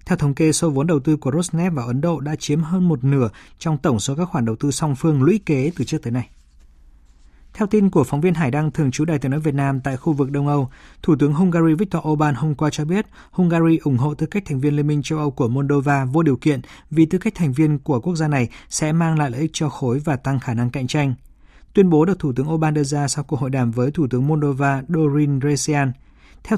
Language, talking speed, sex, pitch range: Vietnamese, 265 wpm, male, 135-165 Hz